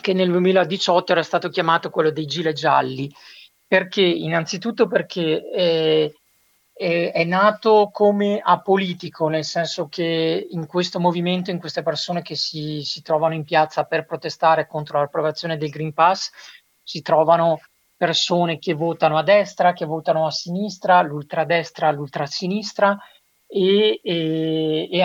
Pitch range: 155-185 Hz